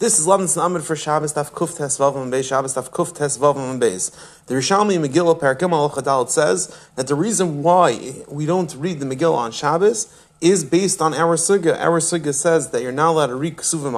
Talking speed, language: 210 wpm, English